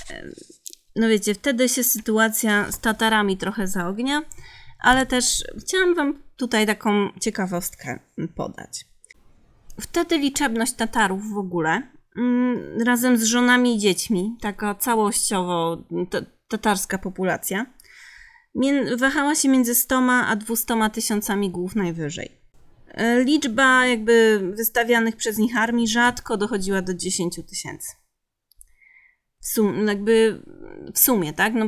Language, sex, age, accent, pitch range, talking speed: Polish, female, 30-49, native, 195-250 Hz, 105 wpm